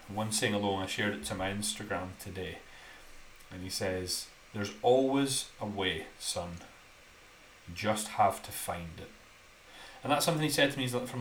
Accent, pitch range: British, 100-130 Hz